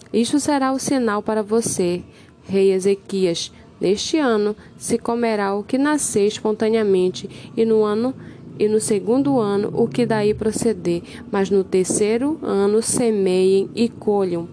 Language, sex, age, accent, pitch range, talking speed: Portuguese, female, 10-29, Brazilian, 185-220 Hz, 140 wpm